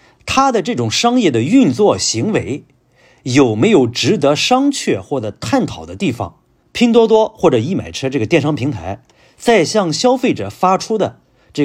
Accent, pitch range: native, 135-220 Hz